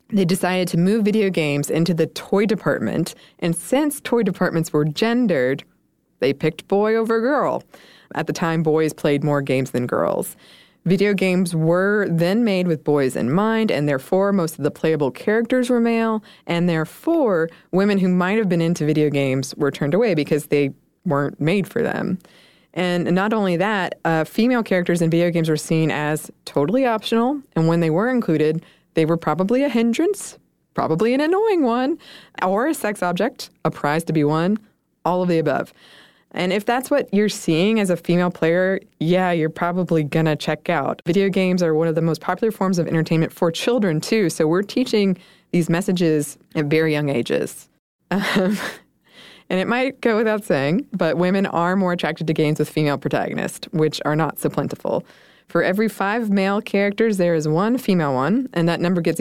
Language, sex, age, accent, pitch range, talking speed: English, female, 20-39, American, 155-205 Hz, 185 wpm